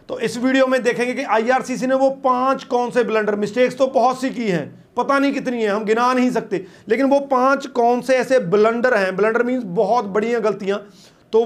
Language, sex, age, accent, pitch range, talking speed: Hindi, male, 40-59, native, 195-240 Hz, 220 wpm